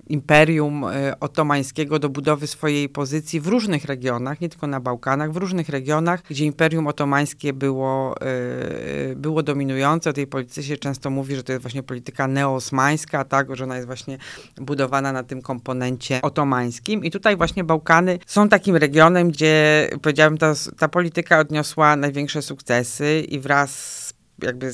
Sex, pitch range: female, 135-160 Hz